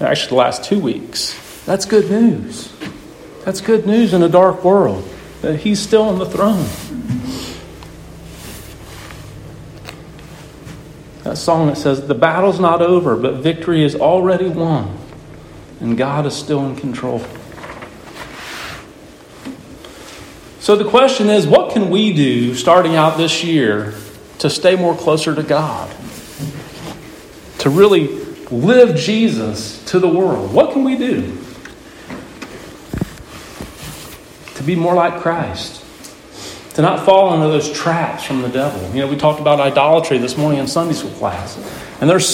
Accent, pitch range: American, 145-185 Hz